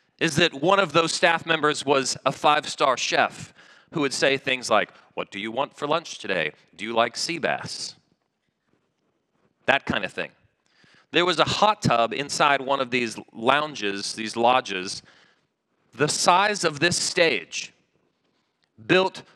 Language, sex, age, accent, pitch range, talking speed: English, male, 30-49, American, 135-170 Hz, 155 wpm